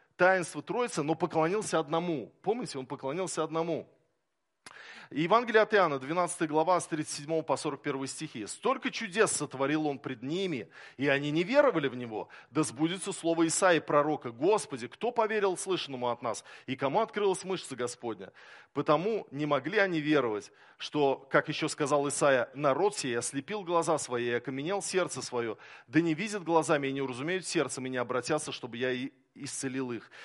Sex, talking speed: male, 165 wpm